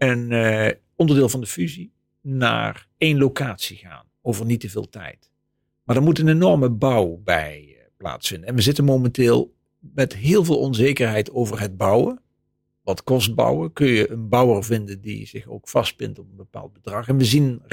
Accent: Dutch